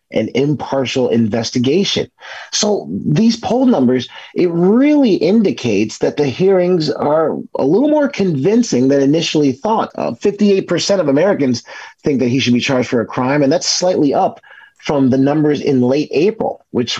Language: English